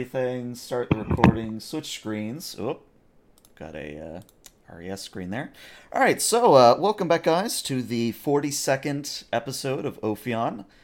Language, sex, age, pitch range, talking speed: English, male, 30-49, 105-135 Hz, 145 wpm